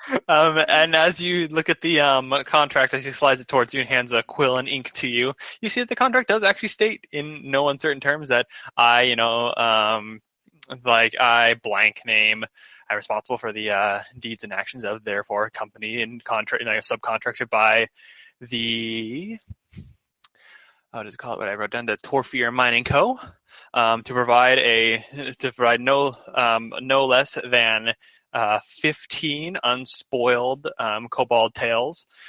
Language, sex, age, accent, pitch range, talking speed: English, male, 20-39, American, 115-140 Hz, 175 wpm